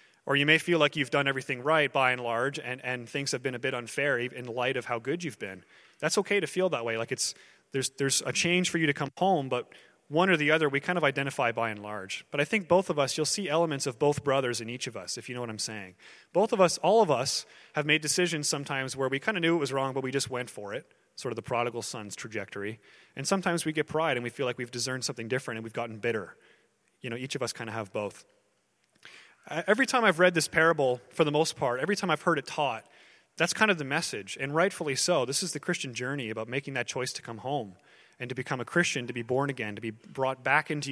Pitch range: 120-155 Hz